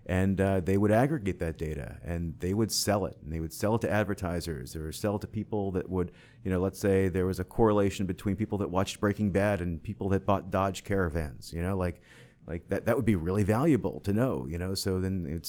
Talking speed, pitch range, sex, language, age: 245 wpm, 90-105 Hz, male, English, 30-49